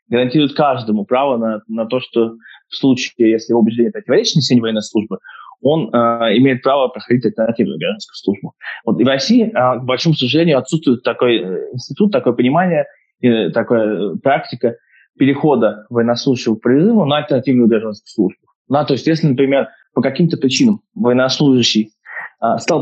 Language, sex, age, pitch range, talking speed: Russian, male, 20-39, 115-145 Hz, 160 wpm